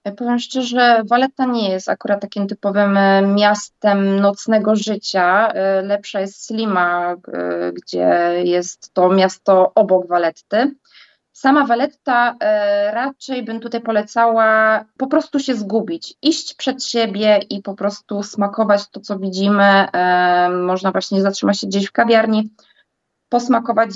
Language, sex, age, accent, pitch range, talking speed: Polish, female, 20-39, native, 190-225 Hz, 120 wpm